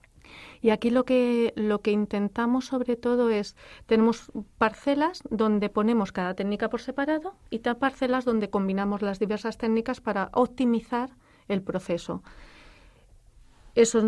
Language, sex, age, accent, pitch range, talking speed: Spanish, female, 40-59, Spanish, 200-240 Hz, 130 wpm